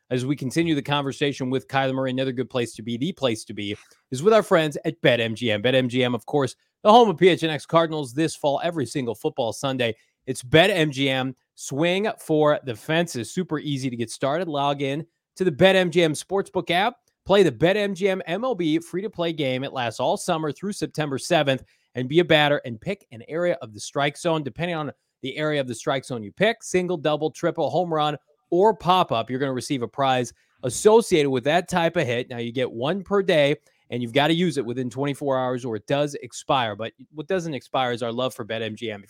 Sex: male